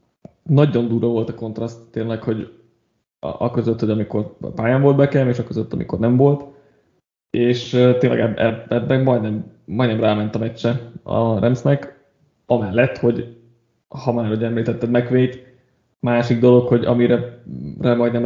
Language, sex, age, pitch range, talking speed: Hungarian, male, 20-39, 115-125 Hz, 140 wpm